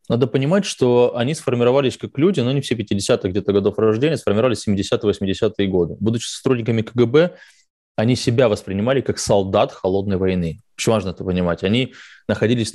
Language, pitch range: Russian, 95-120 Hz